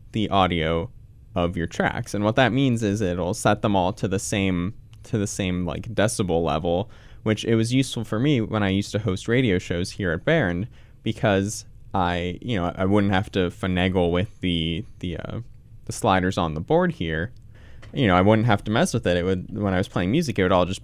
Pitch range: 95-115 Hz